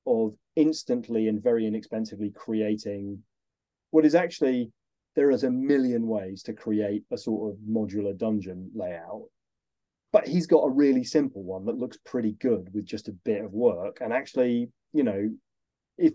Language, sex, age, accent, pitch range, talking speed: English, male, 30-49, British, 105-135 Hz, 165 wpm